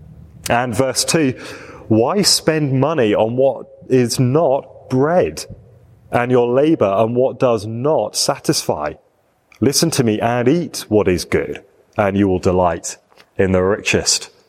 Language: English